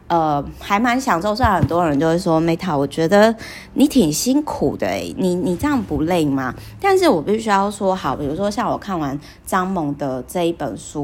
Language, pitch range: Chinese, 145-205 Hz